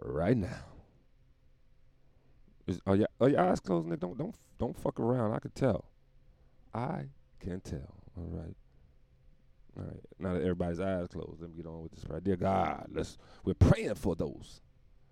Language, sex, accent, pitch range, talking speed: English, male, American, 85-115 Hz, 170 wpm